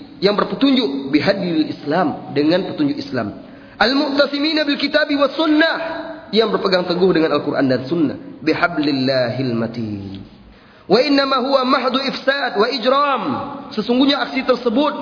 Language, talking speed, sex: Indonesian, 110 wpm, male